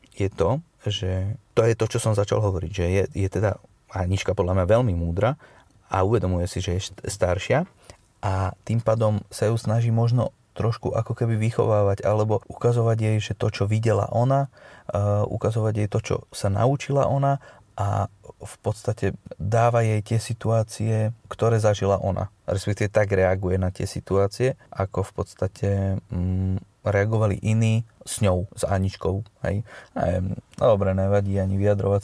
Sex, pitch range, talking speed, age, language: male, 100-120 Hz, 155 wpm, 30-49, Slovak